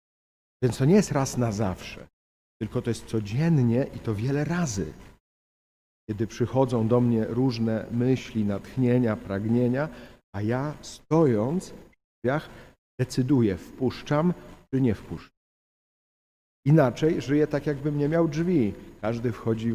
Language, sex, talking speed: Polish, male, 130 wpm